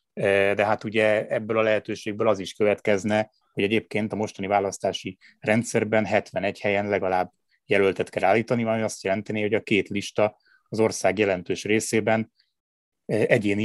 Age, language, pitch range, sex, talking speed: 20-39, Hungarian, 95-110 Hz, male, 145 wpm